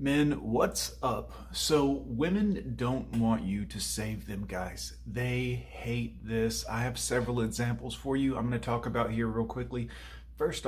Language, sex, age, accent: English, male, 30-49, American